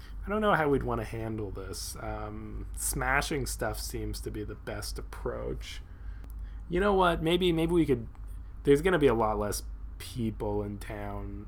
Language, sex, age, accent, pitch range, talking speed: English, male, 20-39, American, 90-120 Hz, 180 wpm